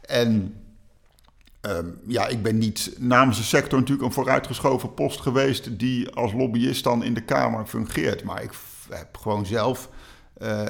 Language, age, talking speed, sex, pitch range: Dutch, 50-69, 165 wpm, male, 110-130 Hz